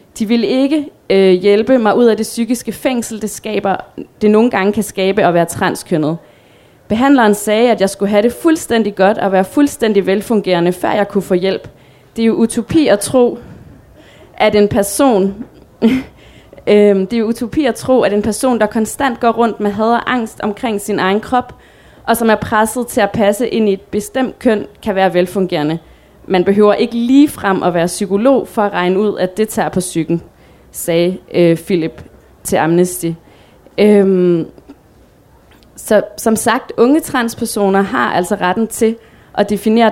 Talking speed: 175 wpm